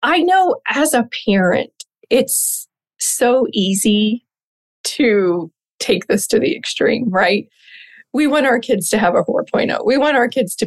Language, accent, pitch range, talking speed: English, American, 200-260 Hz, 155 wpm